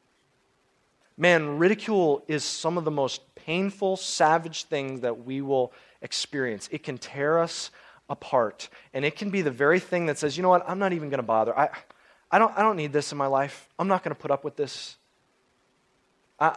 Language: English